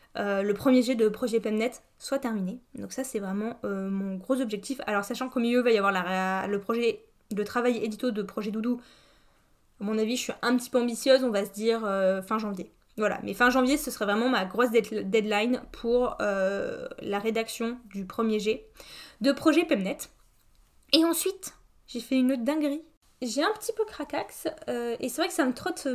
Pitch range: 210-270 Hz